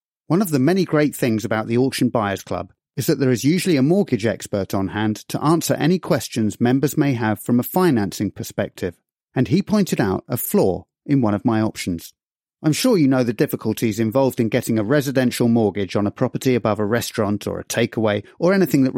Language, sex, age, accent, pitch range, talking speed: English, male, 30-49, British, 105-140 Hz, 210 wpm